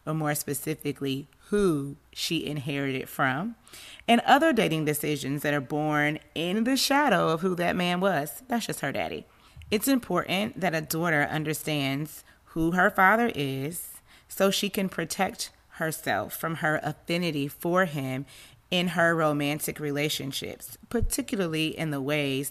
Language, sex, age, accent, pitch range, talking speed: English, female, 30-49, American, 145-180 Hz, 145 wpm